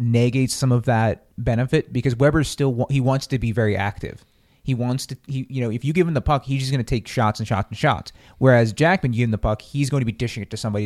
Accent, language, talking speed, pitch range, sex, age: American, English, 280 wpm, 105-135 Hz, male, 30-49